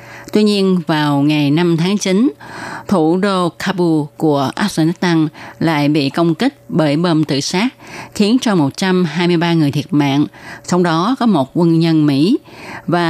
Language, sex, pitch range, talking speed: Vietnamese, female, 145-180 Hz, 155 wpm